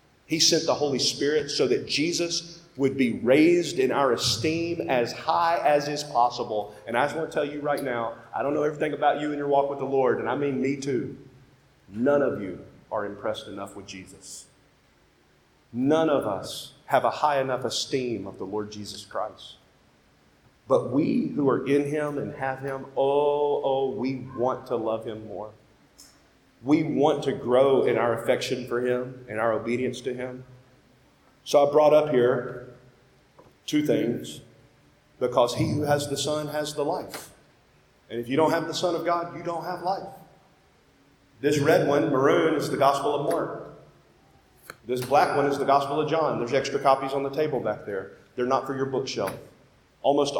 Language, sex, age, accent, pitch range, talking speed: English, male, 40-59, American, 125-150 Hz, 185 wpm